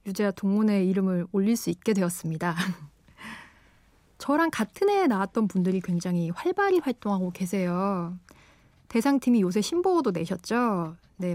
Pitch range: 180-240 Hz